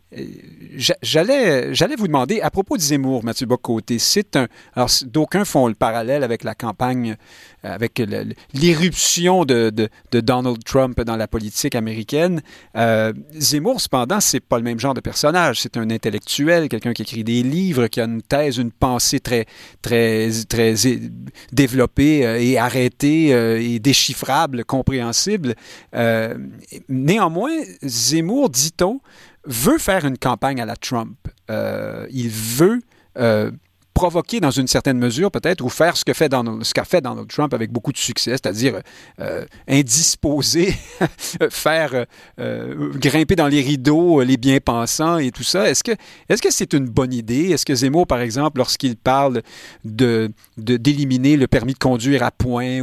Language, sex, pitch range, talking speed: French, male, 115-150 Hz, 155 wpm